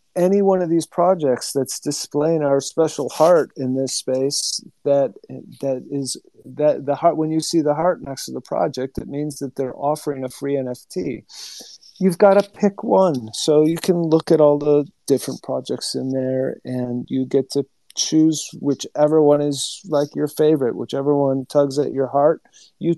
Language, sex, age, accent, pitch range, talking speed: English, male, 40-59, American, 125-150 Hz, 185 wpm